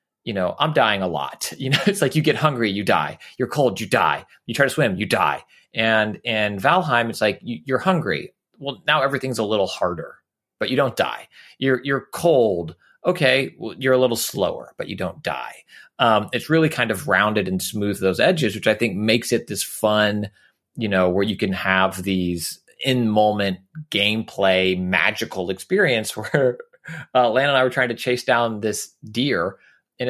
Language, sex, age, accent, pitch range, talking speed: English, male, 30-49, American, 100-155 Hz, 195 wpm